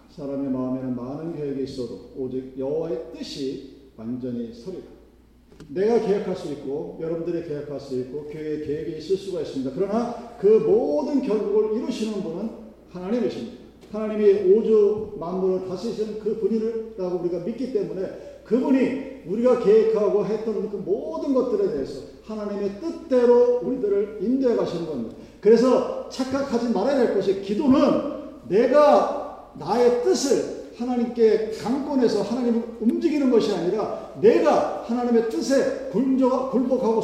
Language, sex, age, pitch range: Korean, male, 40-59, 150-240 Hz